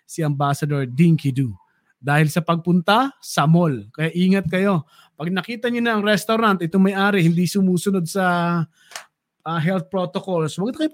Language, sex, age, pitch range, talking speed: Filipino, male, 20-39, 155-210 Hz, 150 wpm